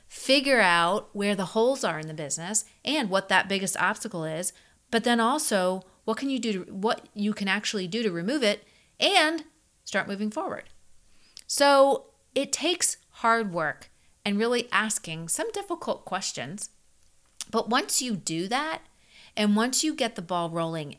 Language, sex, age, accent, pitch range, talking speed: English, female, 30-49, American, 175-230 Hz, 165 wpm